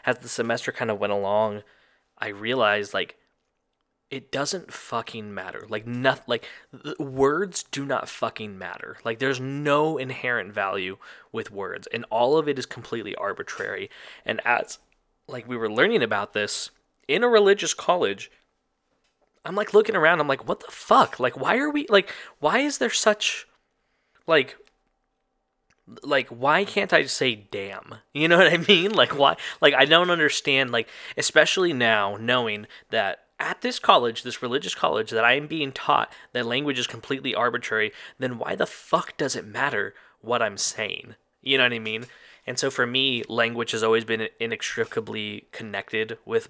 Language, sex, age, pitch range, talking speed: English, male, 20-39, 110-160 Hz, 170 wpm